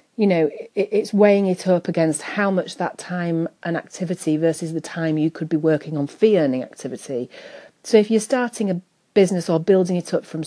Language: English